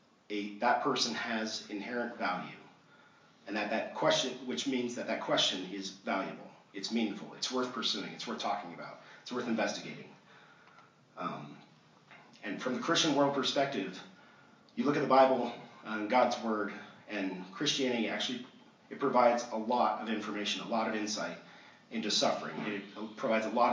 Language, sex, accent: English, male, American